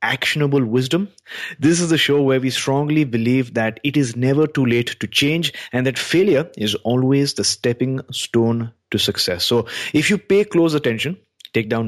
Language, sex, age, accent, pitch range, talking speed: English, male, 30-49, Indian, 110-140 Hz, 180 wpm